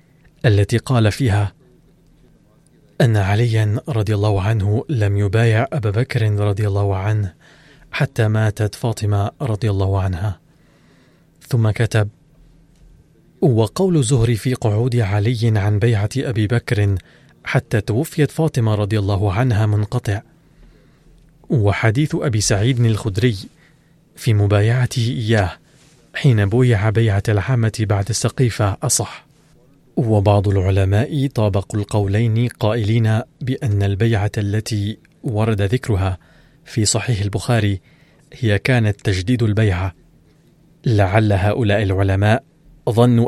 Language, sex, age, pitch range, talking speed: Arabic, male, 30-49, 105-130 Hz, 105 wpm